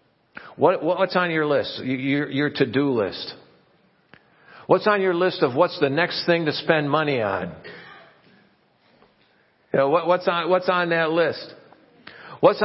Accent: American